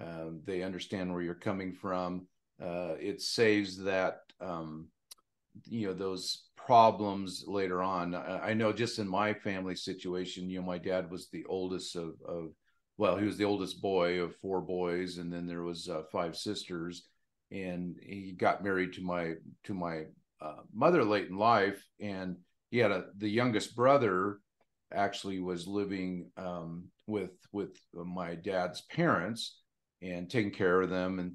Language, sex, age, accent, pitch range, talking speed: English, male, 50-69, American, 90-100 Hz, 165 wpm